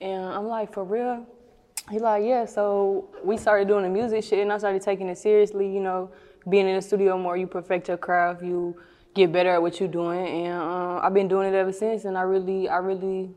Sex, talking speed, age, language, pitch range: female, 235 wpm, 10-29, English, 175-200 Hz